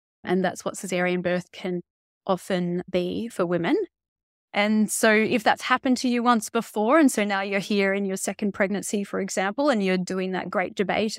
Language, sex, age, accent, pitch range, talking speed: English, female, 30-49, Australian, 180-220 Hz, 195 wpm